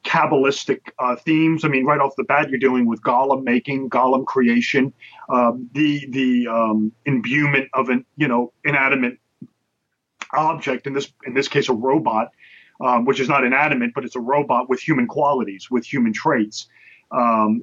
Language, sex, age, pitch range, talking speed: English, male, 30-49, 125-150 Hz, 170 wpm